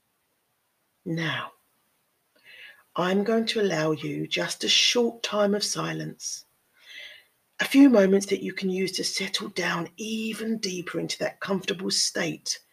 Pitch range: 160-200 Hz